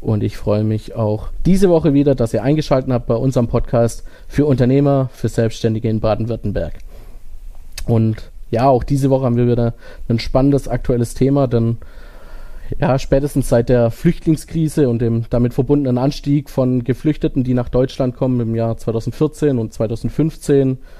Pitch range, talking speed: 115-135 Hz, 155 wpm